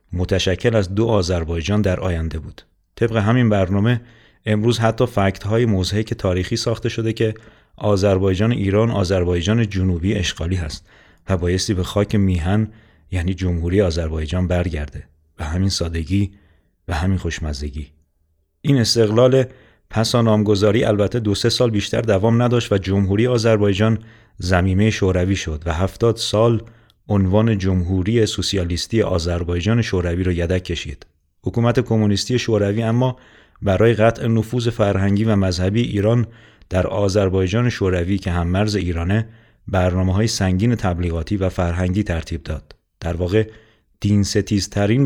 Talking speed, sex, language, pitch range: 130 wpm, male, Persian, 90-110 Hz